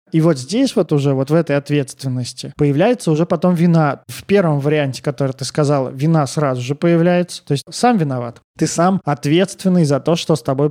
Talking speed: 195 wpm